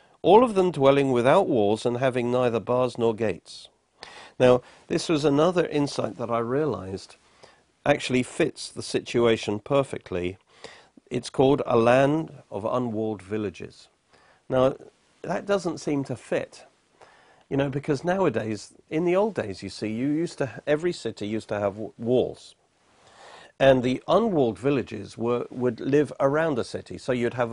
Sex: male